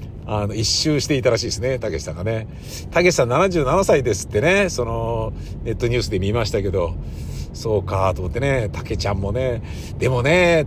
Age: 50-69